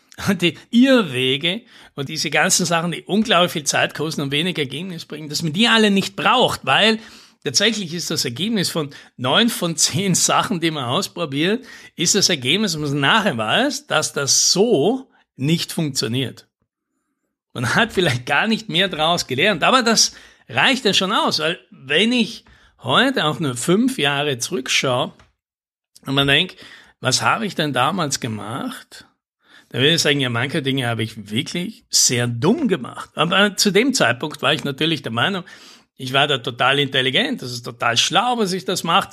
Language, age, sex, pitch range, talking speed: German, 60-79, male, 135-210 Hz, 175 wpm